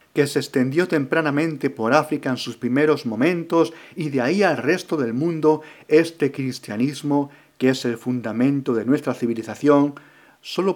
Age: 40-59